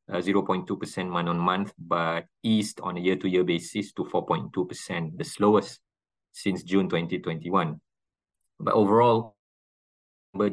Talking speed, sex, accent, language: 110 wpm, male, Malaysian, English